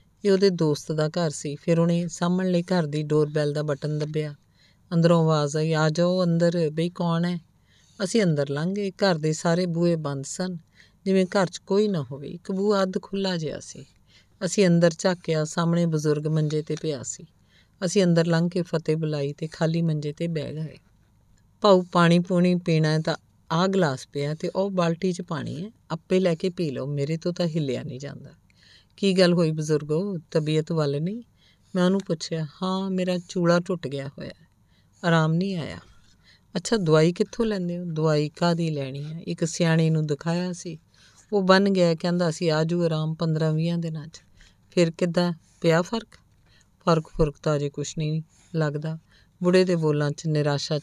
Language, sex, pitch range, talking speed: Punjabi, female, 150-180 Hz, 170 wpm